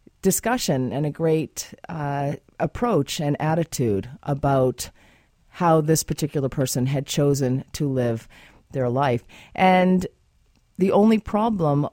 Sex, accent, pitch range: female, American, 140-190 Hz